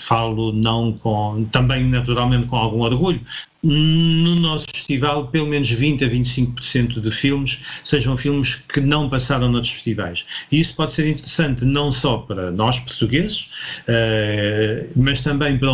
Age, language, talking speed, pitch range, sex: 40-59, Portuguese, 150 wpm, 110-135 Hz, male